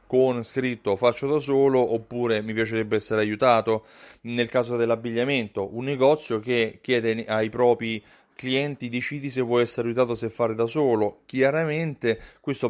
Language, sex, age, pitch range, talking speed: Italian, male, 30-49, 110-145 Hz, 145 wpm